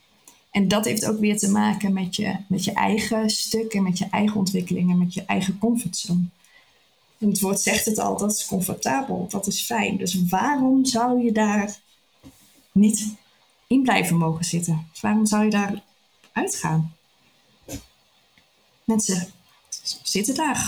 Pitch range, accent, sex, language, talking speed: 190-215 Hz, Dutch, female, Dutch, 150 wpm